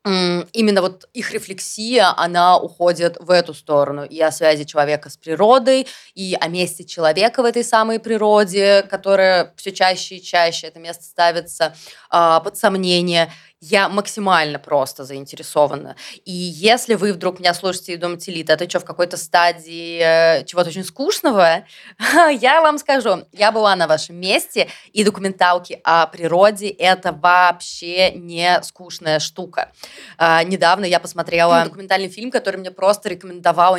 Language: Russian